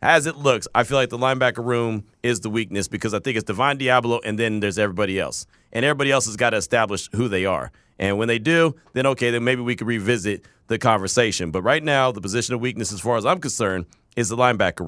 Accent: American